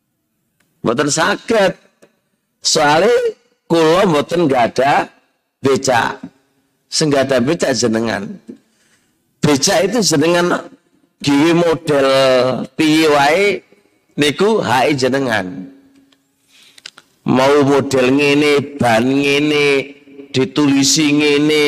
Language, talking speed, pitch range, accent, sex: Indonesian, 80 wpm, 135-200 Hz, native, male